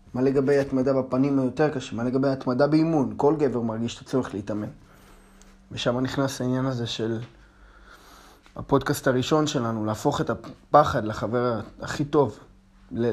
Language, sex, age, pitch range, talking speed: Hebrew, male, 20-39, 110-135 Hz, 140 wpm